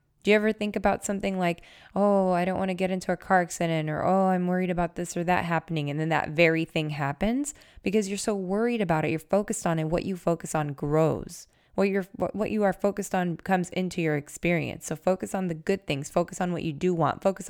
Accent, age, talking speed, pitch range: American, 20-39, 240 wpm, 160-195 Hz